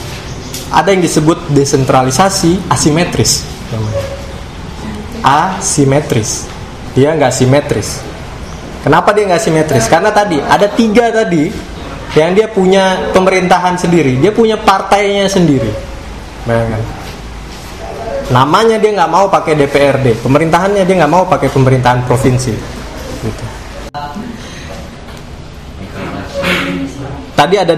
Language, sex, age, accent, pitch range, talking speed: Indonesian, male, 20-39, native, 120-165 Hz, 95 wpm